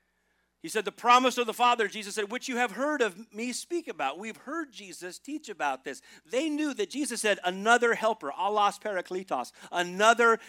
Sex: male